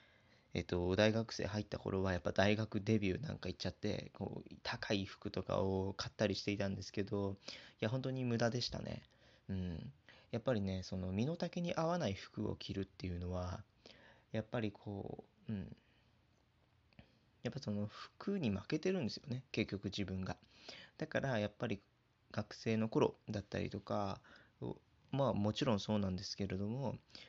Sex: male